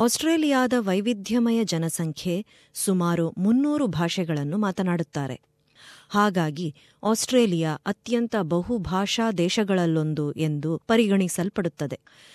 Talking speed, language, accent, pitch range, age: 70 wpm, Kannada, native, 160-230 Hz, 30-49